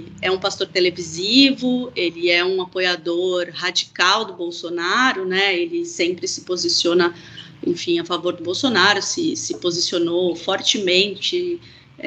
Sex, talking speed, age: female, 125 wpm, 30-49